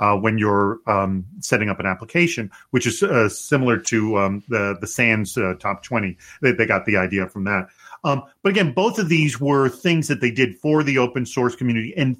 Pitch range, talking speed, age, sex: 120-170 Hz, 215 wpm, 40-59, male